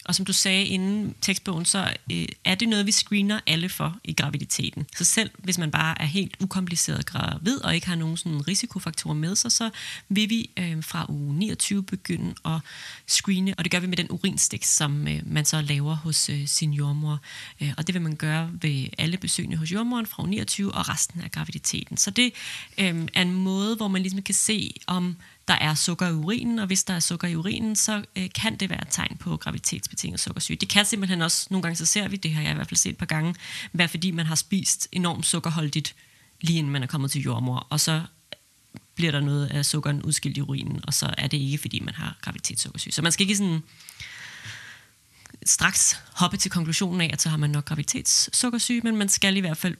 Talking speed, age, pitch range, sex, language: 215 wpm, 30-49, 150-190 Hz, female, Danish